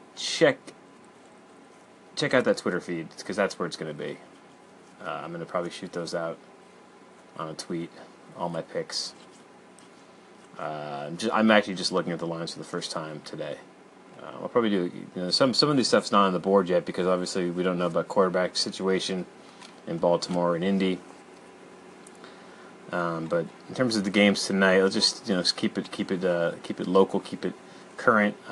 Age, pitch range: 30-49, 90-110 Hz